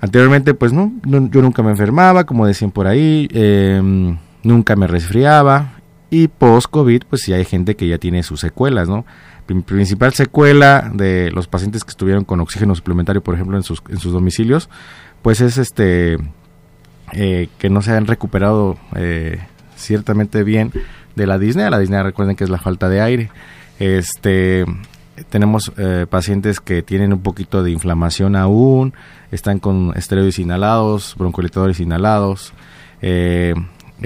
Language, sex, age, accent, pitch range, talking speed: Spanish, male, 30-49, Mexican, 90-110 Hz, 155 wpm